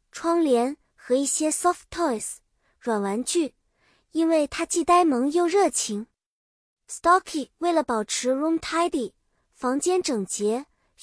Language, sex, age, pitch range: Chinese, male, 20-39, 245-330 Hz